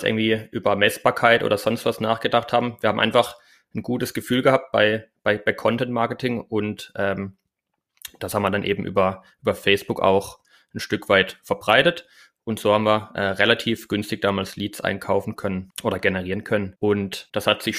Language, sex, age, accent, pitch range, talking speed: German, male, 20-39, German, 100-115 Hz, 175 wpm